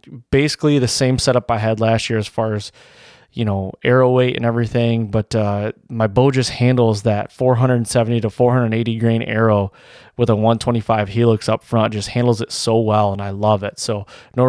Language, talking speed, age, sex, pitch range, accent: English, 190 wpm, 20-39, male, 110-125 Hz, American